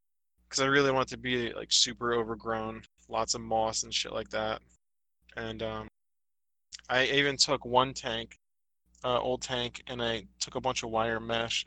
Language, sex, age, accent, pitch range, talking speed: English, male, 20-39, American, 110-125 Hz, 180 wpm